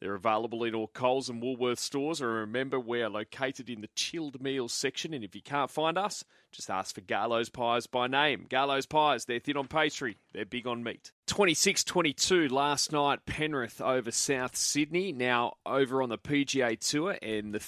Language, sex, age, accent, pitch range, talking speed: English, male, 30-49, Australian, 110-135 Hz, 185 wpm